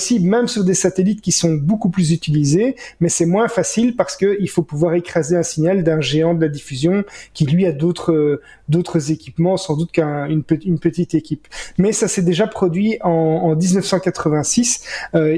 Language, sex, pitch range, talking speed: French, male, 155-180 Hz, 185 wpm